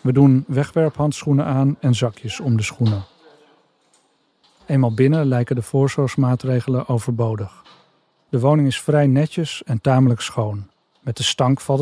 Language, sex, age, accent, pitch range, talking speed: Dutch, male, 40-59, Dutch, 115-140 Hz, 135 wpm